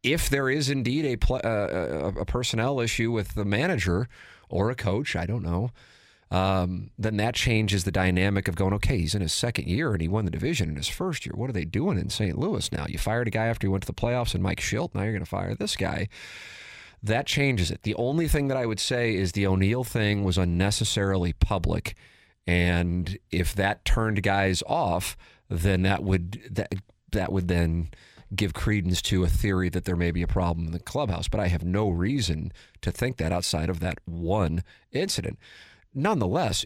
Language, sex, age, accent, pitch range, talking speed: English, male, 30-49, American, 90-110 Hz, 210 wpm